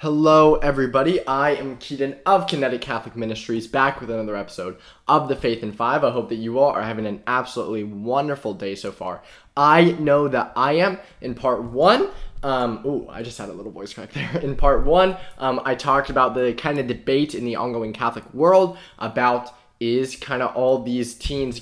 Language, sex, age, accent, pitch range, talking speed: English, male, 20-39, American, 115-140 Hz, 200 wpm